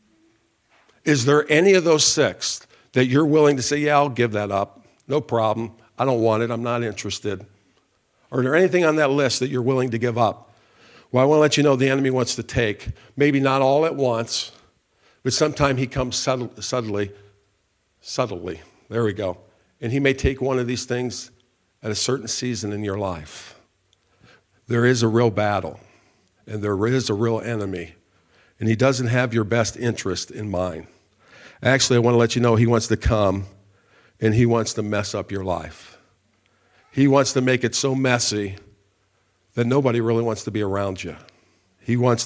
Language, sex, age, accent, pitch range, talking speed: English, male, 50-69, American, 100-125 Hz, 190 wpm